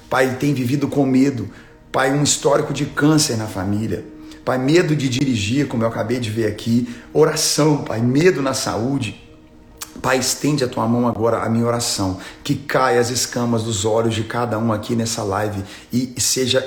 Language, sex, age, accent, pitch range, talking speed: Portuguese, male, 40-59, Brazilian, 115-140 Hz, 185 wpm